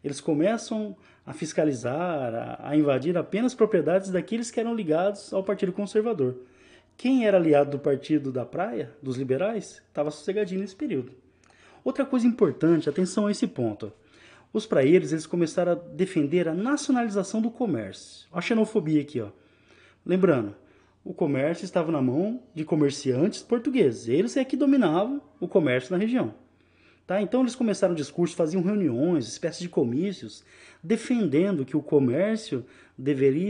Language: Portuguese